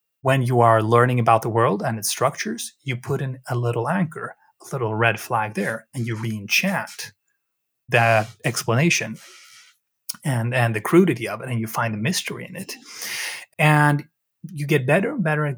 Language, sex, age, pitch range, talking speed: English, male, 30-49, 120-160 Hz, 175 wpm